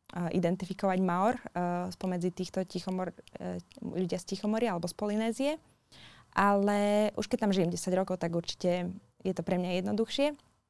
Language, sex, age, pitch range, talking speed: Slovak, female, 20-39, 165-190 Hz, 150 wpm